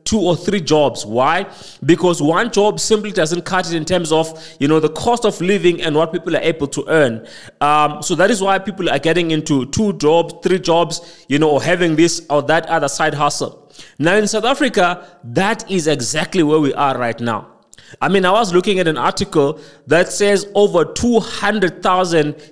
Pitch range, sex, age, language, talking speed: 155-195 Hz, male, 30-49, English, 200 wpm